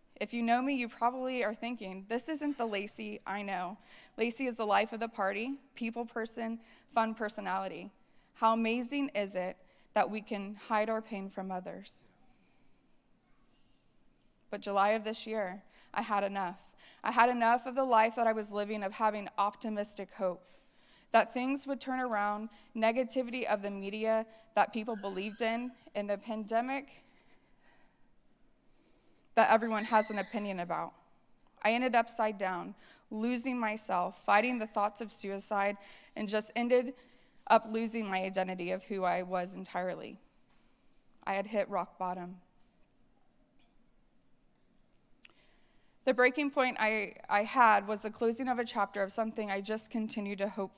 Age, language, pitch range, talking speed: 20-39, English, 200-235 Hz, 150 wpm